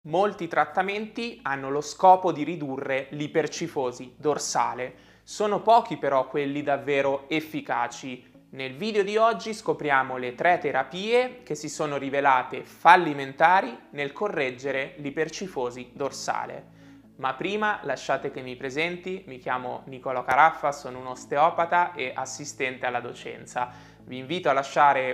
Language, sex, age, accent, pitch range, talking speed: Italian, male, 20-39, native, 130-170 Hz, 125 wpm